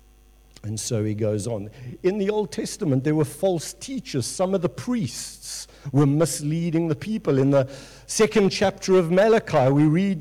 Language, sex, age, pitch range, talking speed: English, male, 50-69, 125-185 Hz, 170 wpm